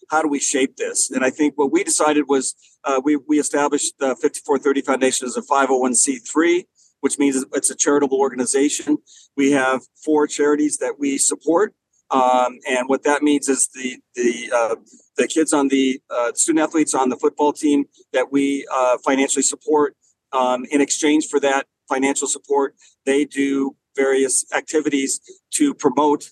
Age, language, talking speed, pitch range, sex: 40-59, English, 165 wpm, 135-155 Hz, male